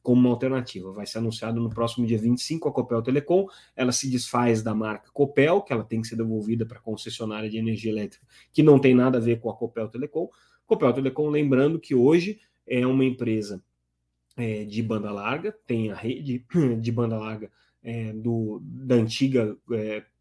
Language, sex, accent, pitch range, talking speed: Portuguese, male, Brazilian, 110-125 Hz, 190 wpm